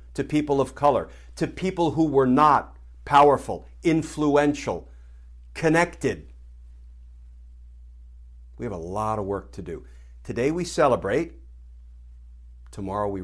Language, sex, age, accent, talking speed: English, male, 60-79, American, 115 wpm